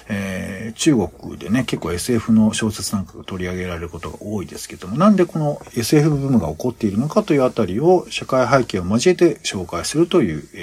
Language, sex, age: Japanese, male, 50-69